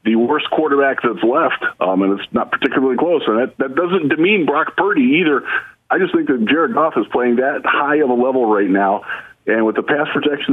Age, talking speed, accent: 50-69, 220 wpm, American